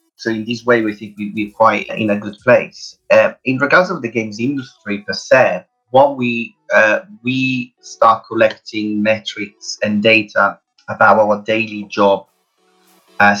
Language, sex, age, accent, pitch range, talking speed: English, male, 30-49, British, 105-120 Hz, 155 wpm